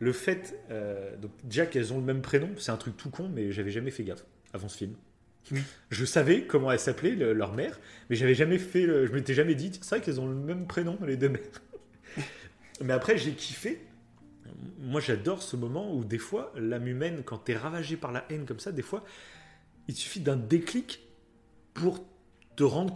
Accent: French